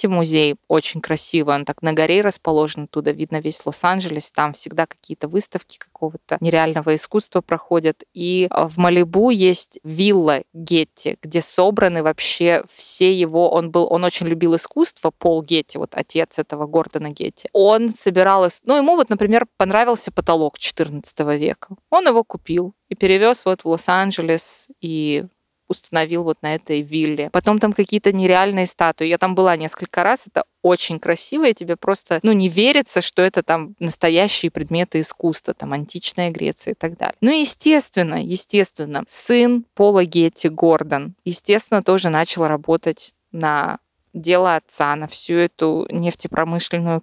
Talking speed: 150 wpm